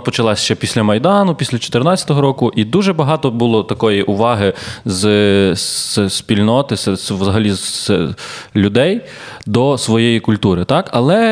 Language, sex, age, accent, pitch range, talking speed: Ukrainian, male, 20-39, native, 115-155 Hz, 150 wpm